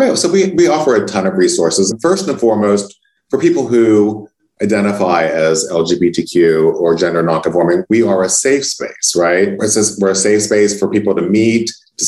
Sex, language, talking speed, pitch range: male, English, 175 wpm, 95-120 Hz